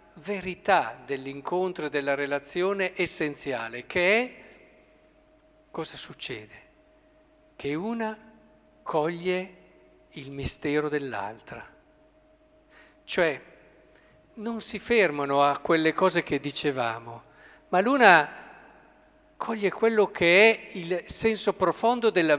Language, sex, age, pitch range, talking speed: Italian, male, 50-69, 160-215 Hz, 95 wpm